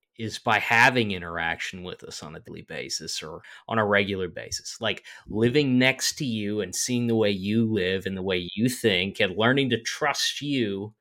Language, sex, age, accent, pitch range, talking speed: English, male, 20-39, American, 105-135 Hz, 195 wpm